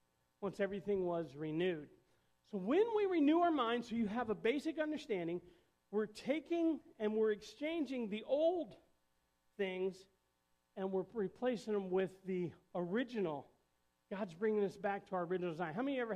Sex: male